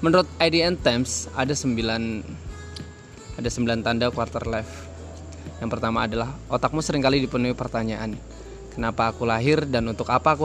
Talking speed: 130 wpm